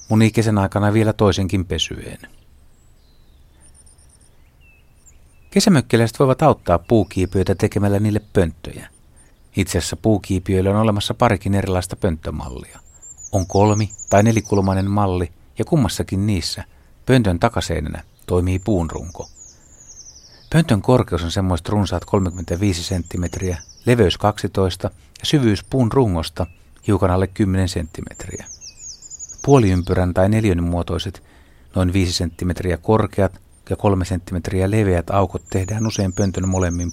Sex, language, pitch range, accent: male, Finnish, 85-105 Hz, native